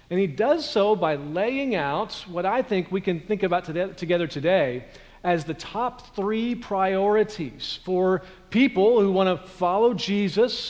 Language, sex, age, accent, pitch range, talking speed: English, male, 40-59, American, 155-205 Hz, 155 wpm